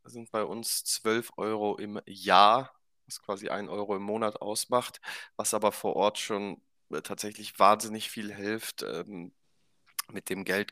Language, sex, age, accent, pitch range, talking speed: German, male, 20-39, German, 100-110 Hz, 145 wpm